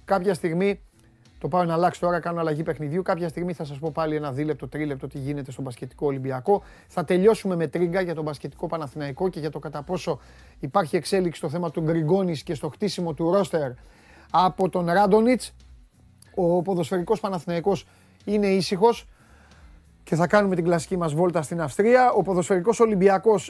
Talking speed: 170 wpm